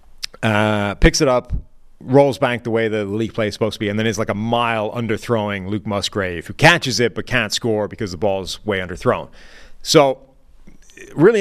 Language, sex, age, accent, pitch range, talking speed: English, male, 30-49, American, 110-135 Hz, 200 wpm